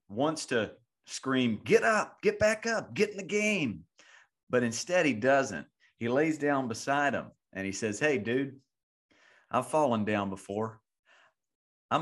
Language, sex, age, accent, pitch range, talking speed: English, male, 40-59, American, 105-135 Hz, 155 wpm